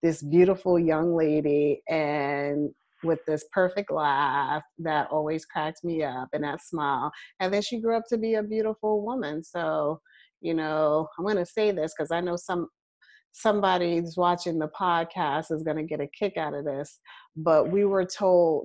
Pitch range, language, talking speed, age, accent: 160-215 Hz, English, 175 wpm, 30-49, American